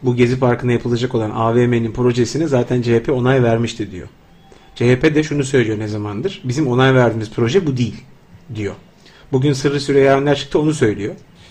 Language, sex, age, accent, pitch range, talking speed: Turkish, male, 40-59, native, 115-155 Hz, 165 wpm